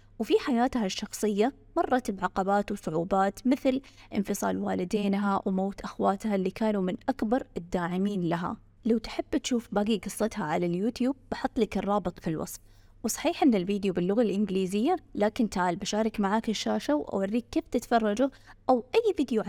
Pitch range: 190-240 Hz